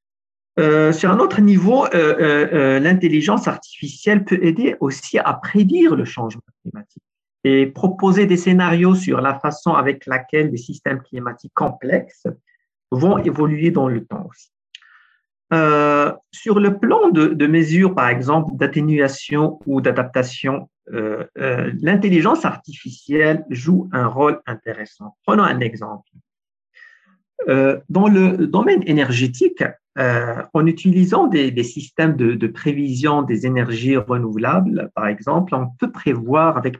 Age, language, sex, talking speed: 50-69, French, male, 135 wpm